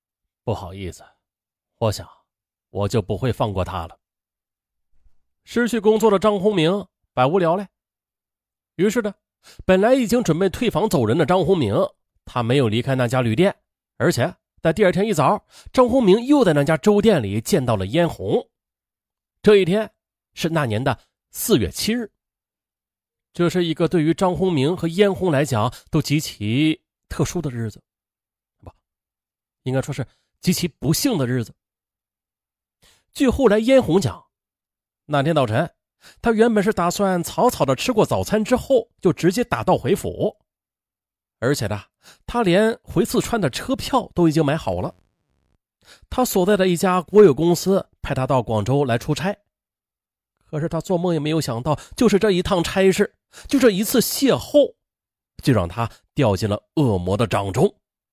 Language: Chinese